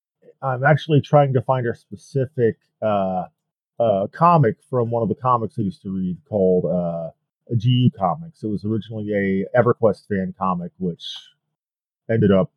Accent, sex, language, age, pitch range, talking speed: American, male, English, 40-59, 110-155 Hz, 160 wpm